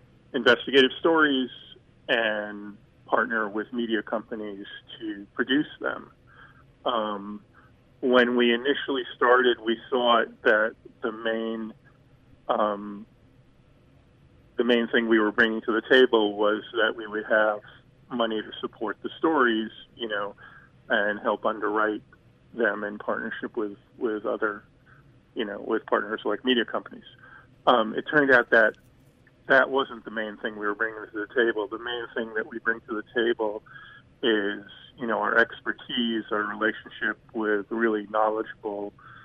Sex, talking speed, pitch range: male, 140 wpm, 105-115 Hz